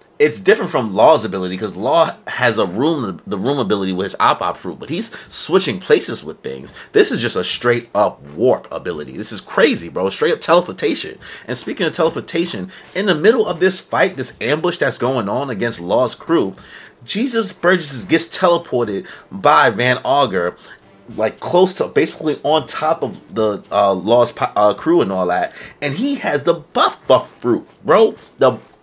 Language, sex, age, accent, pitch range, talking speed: English, male, 30-49, American, 115-175 Hz, 185 wpm